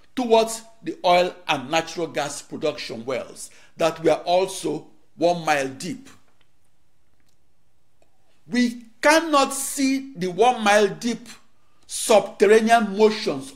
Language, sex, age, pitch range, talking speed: English, male, 50-69, 170-245 Hz, 100 wpm